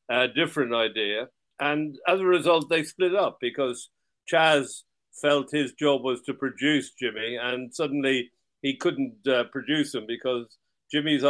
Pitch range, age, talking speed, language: 125-155 Hz, 50-69, 150 wpm, English